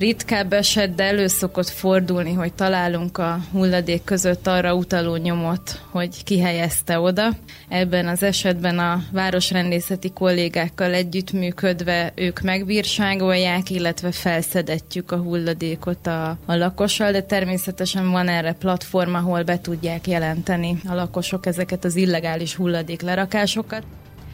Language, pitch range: Hungarian, 145-180 Hz